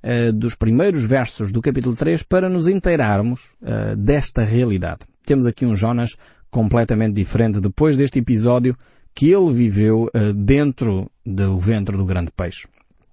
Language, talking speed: Portuguese, 135 wpm